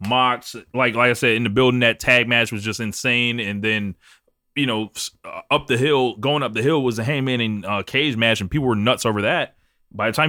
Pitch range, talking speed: 105-135 Hz, 240 wpm